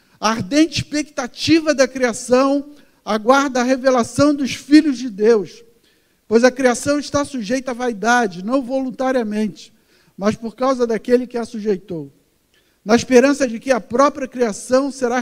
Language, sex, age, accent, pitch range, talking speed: Portuguese, male, 50-69, Brazilian, 225-270 Hz, 140 wpm